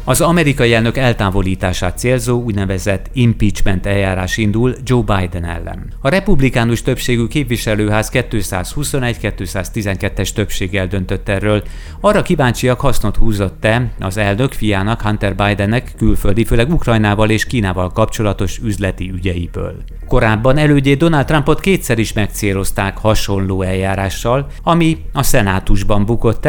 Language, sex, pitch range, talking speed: Hungarian, male, 100-120 Hz, 115 wpm